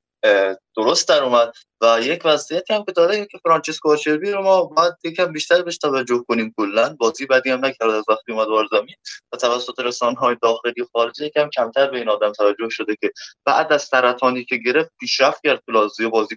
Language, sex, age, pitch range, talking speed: Persian, male, 20-39, 120-150 Hz, 190 wpm